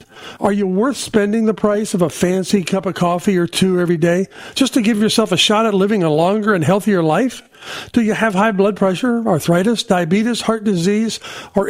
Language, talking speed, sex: English, 205 wpm, male